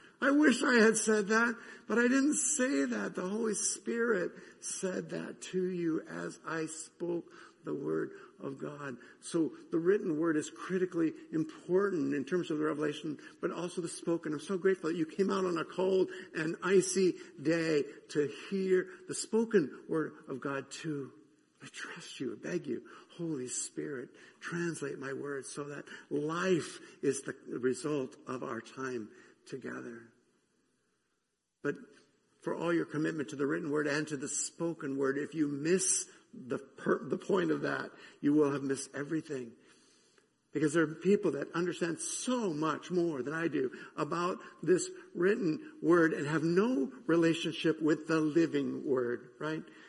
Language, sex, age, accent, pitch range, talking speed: English, male, 60-79, American, 155-220 Hz, 165 wpm